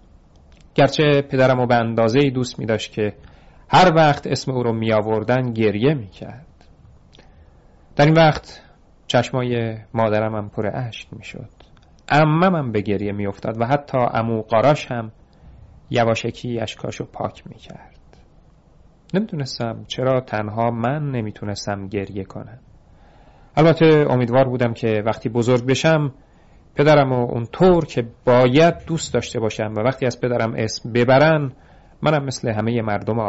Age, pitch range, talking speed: 40-59, 105-135 Hz, 130 wpm